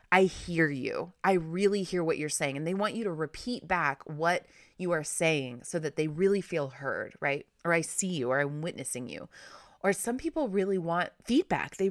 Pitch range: 145-195 Hz